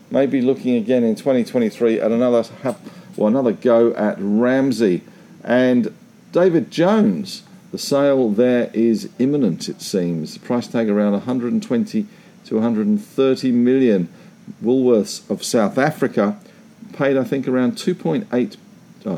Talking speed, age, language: 125 wpm, 50-69, English